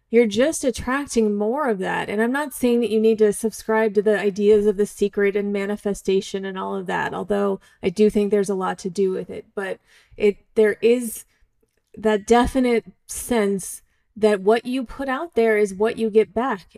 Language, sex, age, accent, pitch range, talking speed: English, female, 30-49, American, 210-250 Hz, 200 wpm